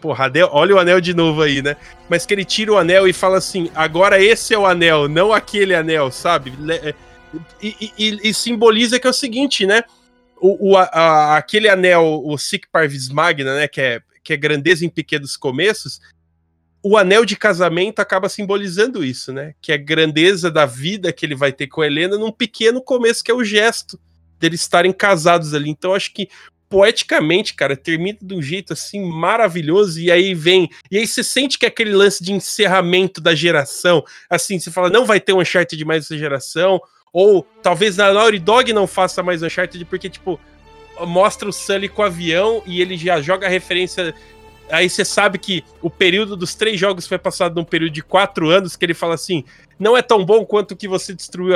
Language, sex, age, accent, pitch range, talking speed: Portuguese, male, 20-39, Brazilian, 160-200 Hz, 205 wpm